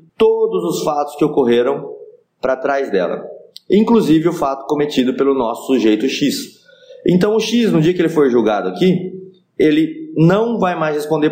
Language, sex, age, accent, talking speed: Portuguese, male, 20-39, Brazilian, 165 wpm